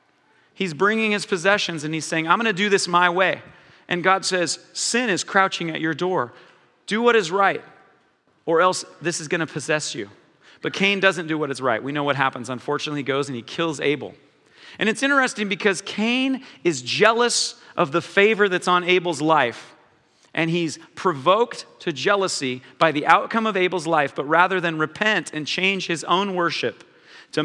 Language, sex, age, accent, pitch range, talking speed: English, male, 40-59, American, 160-210 Hz, 190 wpm